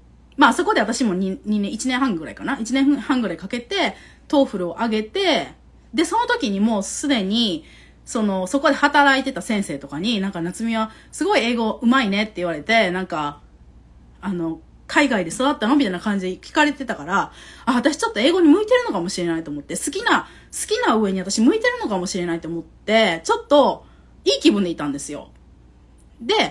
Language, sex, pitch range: Japanese, female, 185-285 Hz